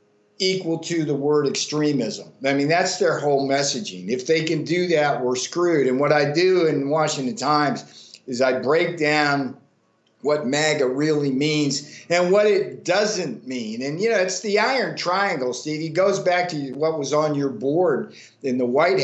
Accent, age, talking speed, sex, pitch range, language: American, 50-69, 185 wpm, male, 140-170 Hz, English